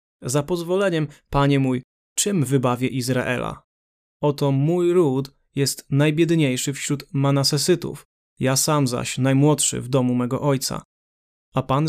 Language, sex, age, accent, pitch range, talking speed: Polish, male, 20-39, native, 130-150 Hz, 120 wpm